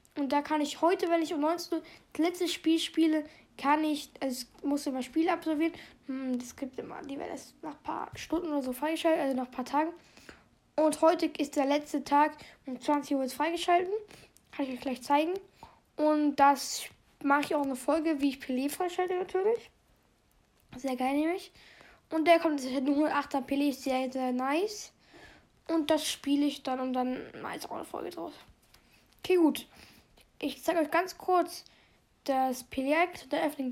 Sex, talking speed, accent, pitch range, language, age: female, 195 wpm, German, 275-335 Hz, German, 10-29